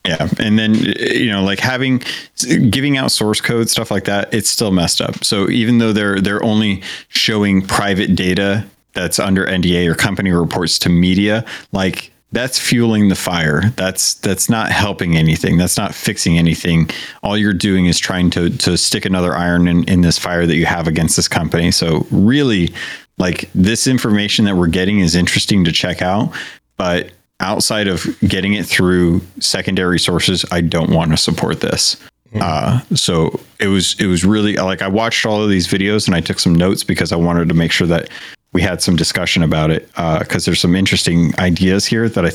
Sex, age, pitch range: male, 30-49, 85-105 Hz